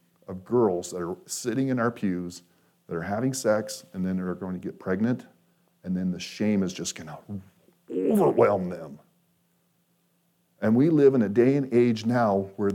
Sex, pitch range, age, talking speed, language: male, 105-140 Hz, 40-59, 180 wpm, English